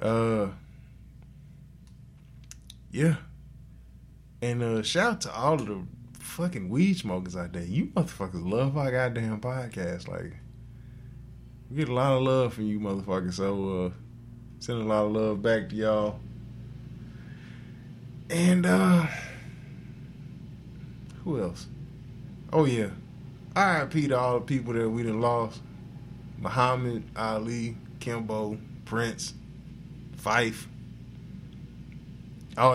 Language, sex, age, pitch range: English, male, 20-39, 105-130 Hz